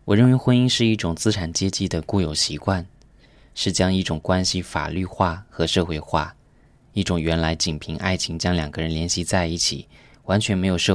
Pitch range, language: 80-100 Hz, Chinese